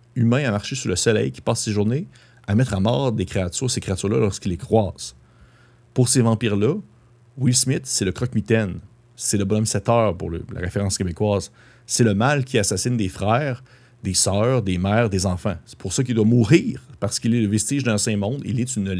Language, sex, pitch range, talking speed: French, male, 105-125 Hz, 210 wpm